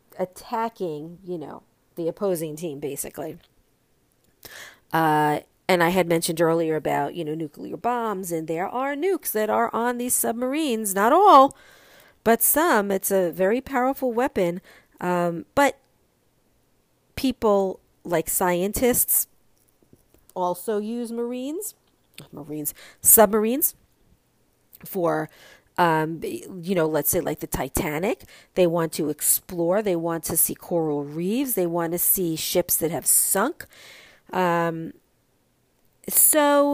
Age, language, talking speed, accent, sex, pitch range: 40-59, English, 120 wpm, American, female, 170-230 Hz